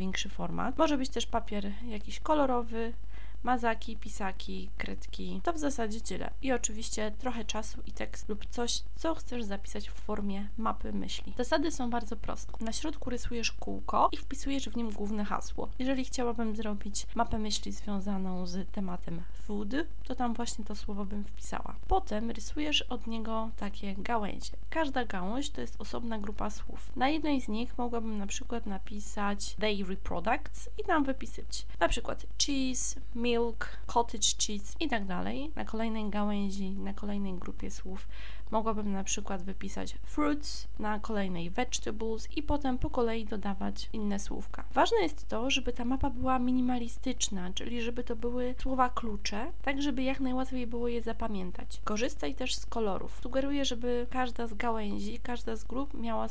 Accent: native